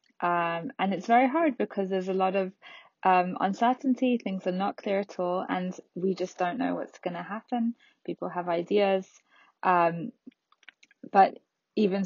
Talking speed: 165 wpm